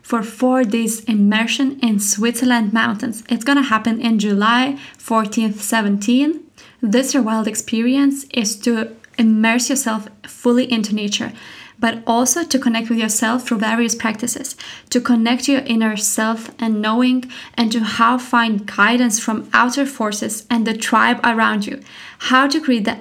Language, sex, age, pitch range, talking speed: English, female, 20-39, 220-245 Hz, 150 wpm